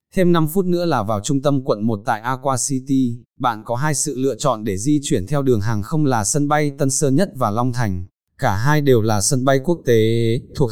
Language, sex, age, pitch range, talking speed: Vietnamese, male, 20-39, 115-145 Hz, 245 wpm